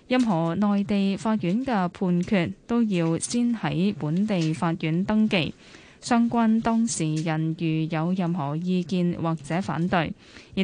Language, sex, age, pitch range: Chinese, female, 10-29, 165-215 Hz